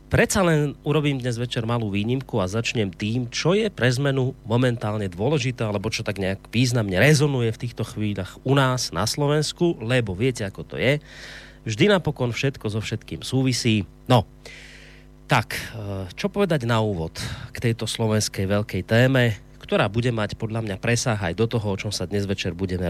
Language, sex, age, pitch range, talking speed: Slovak, male, 30-49, 110-145 Hz, 175 wpm